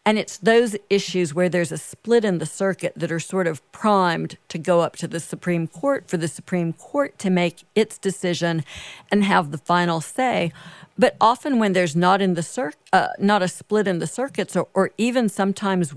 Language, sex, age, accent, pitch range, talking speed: English, female, 50-69, American, 170-200 Hz, 205 wpm